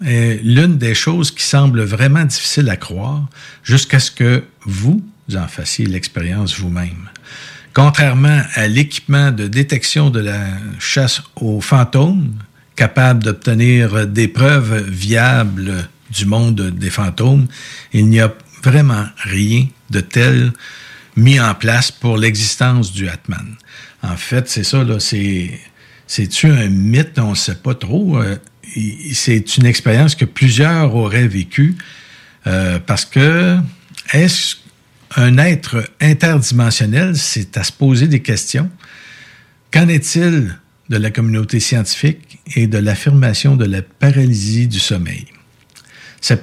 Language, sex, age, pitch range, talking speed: French, male, 50-69, 110-140 Hz, 130 wpm